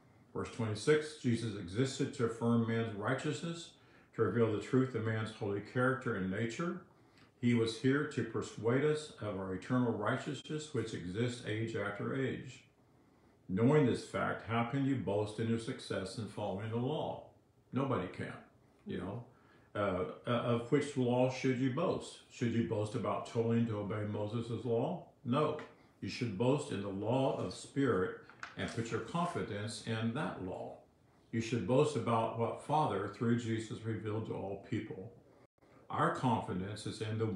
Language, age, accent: English, 50-69, American